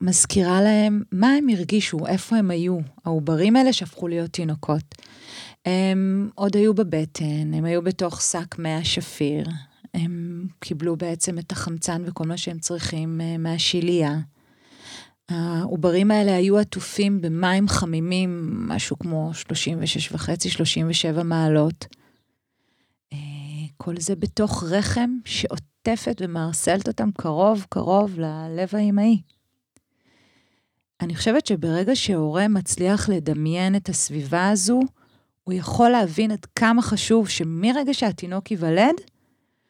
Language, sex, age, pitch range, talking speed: Hebrew, female, 30-49, 165-205 Hz, 105 wpm